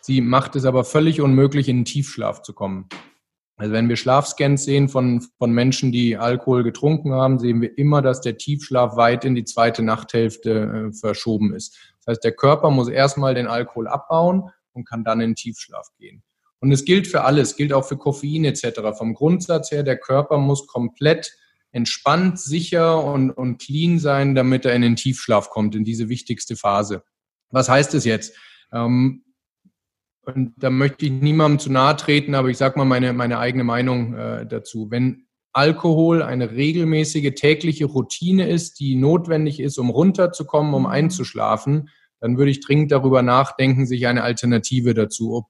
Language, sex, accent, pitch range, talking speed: German, male, German, 120-150 Hz, 180 wpm